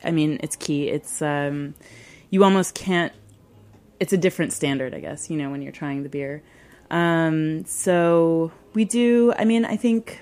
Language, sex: English, female